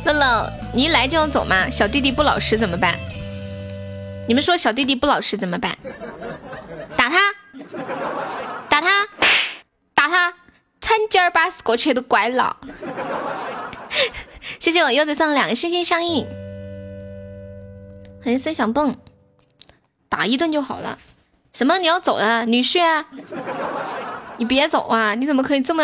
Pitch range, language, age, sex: 220-300 Hz, Chinese, 10-29, female